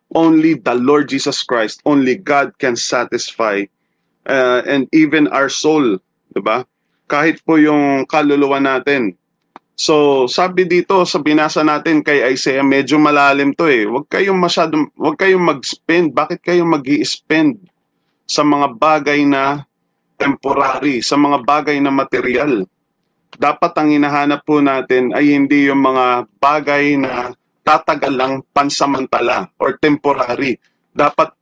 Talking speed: 130 wpm